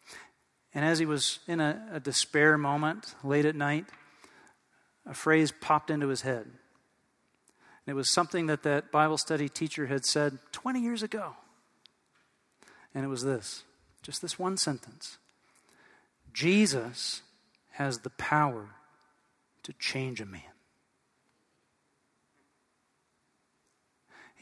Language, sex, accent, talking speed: English, male, American, 120 wpm